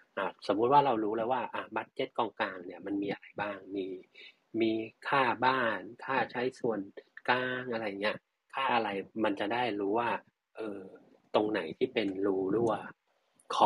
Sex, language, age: male, Thai, 30-49